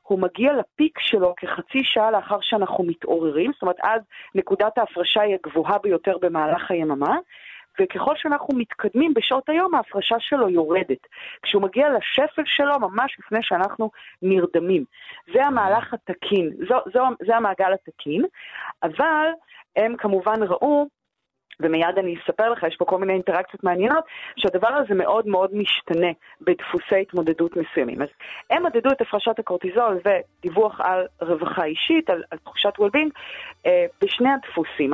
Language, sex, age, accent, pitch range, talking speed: Hebrew, female, 40-59, native, 180-275 Hz, 140 wpm